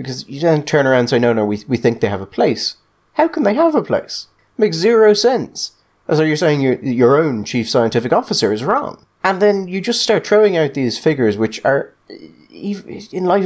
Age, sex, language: 30-49, male, English